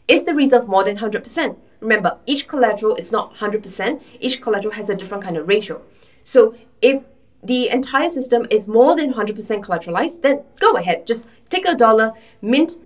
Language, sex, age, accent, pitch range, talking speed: English, female, 20-39, Malaysian, 200-250 Hz, 180 wpm